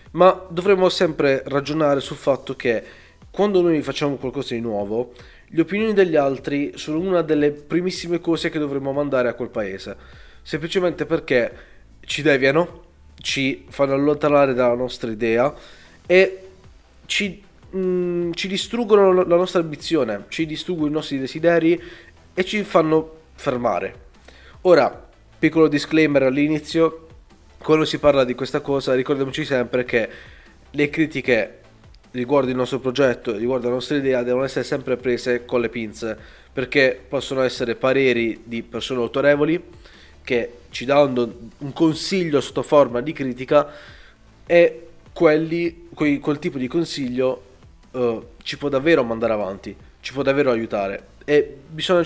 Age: 20-39